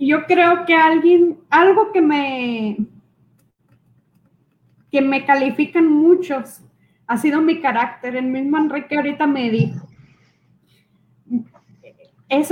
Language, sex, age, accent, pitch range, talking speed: Spanish, female, 20-39, Mexican, 260-315 Hz, 105 wpm